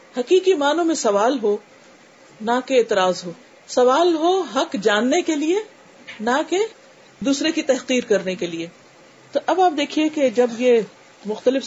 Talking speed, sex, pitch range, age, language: 160 wpm, female, 210-280 Hz, 40-59, Urdu